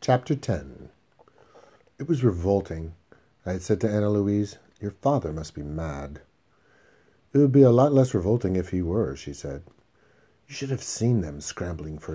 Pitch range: 80-110 Hz